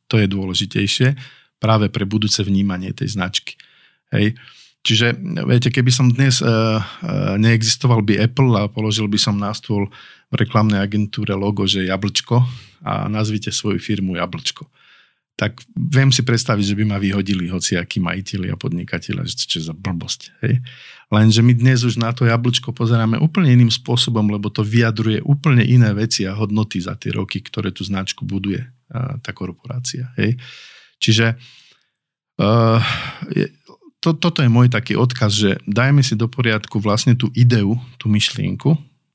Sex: male